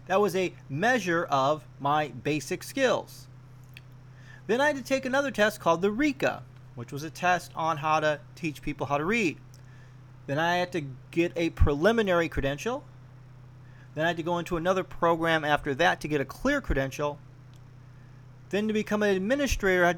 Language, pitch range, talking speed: English, 130-180 Hz, 180 wpm